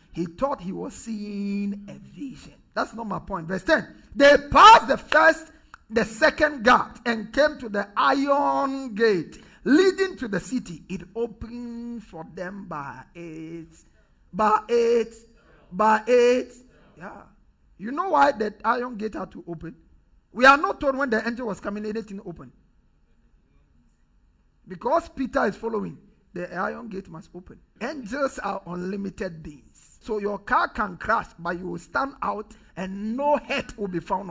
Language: English